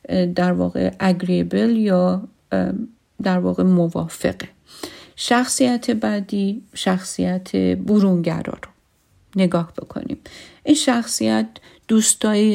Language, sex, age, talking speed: Persian, female, 50-69, 80 wpm